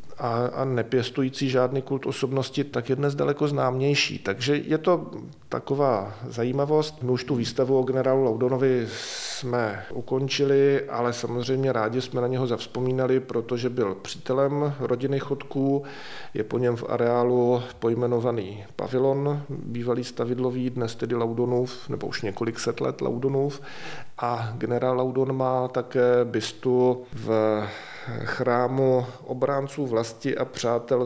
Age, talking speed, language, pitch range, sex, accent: 40-59, 130 wpm, Czech, 120-135 Hz, male, native